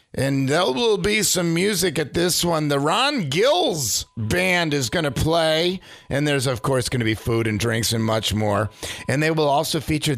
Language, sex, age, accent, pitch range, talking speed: English, male, 50-69, American, 120-165 Hz, 205 wpm